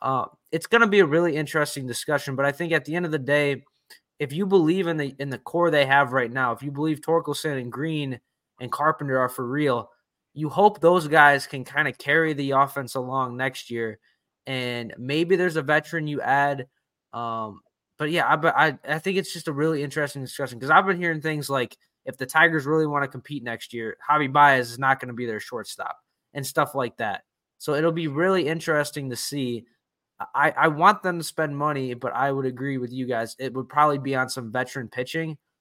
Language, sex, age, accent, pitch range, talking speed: English, male, 20-39, American, 125-150 Hz, 220 wpm